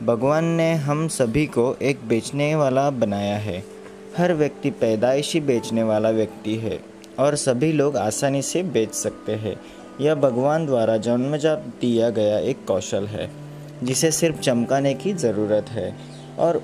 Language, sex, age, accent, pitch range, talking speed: Hindi, male, 20-39, native, 110-145 Hz, 150 wpm